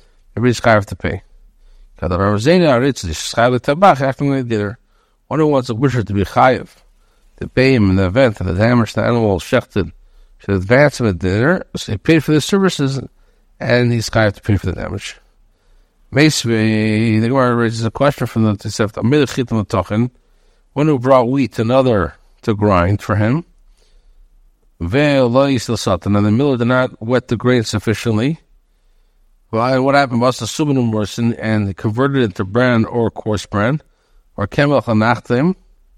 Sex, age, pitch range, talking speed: male, 50-69, 100-130 Hz, 150 wpm